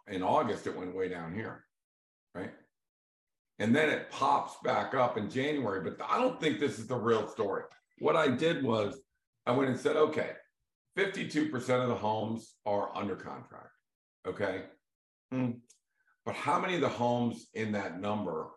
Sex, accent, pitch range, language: male, American, 105-125 Hz, English